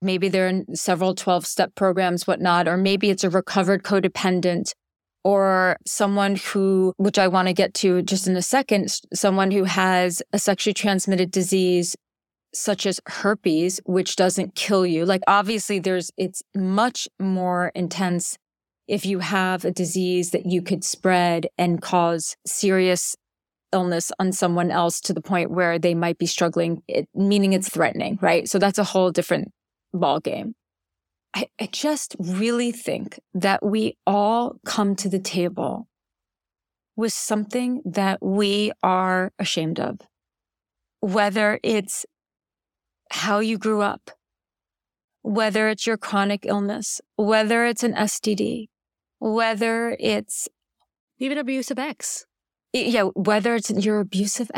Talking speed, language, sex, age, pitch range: 140 wpm, English, female, 30-49, 180-210 Hz